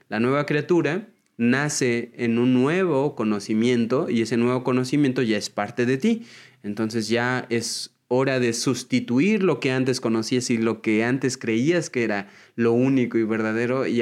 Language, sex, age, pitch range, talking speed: Spanish, male, 30-49, 115-135 Hz, 165 wpm